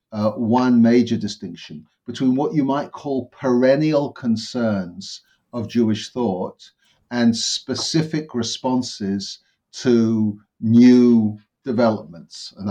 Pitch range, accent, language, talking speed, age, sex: 110-125 Hz, British, English, 100 wpm, 50-69, male